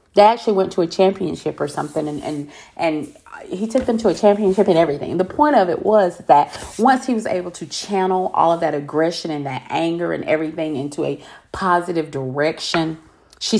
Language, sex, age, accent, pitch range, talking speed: English, female, 40-59, American, 160-225 Hz, 205 wpm